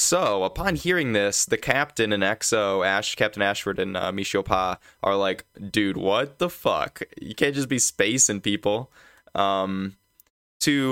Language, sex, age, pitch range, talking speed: English, male, 10-29, 95-110 Hz, 160 wpm